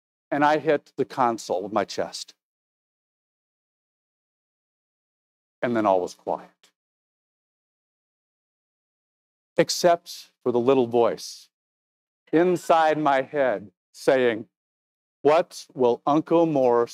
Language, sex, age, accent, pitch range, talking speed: English, male, 50-69, American, 120-175 Hz, 90 wpm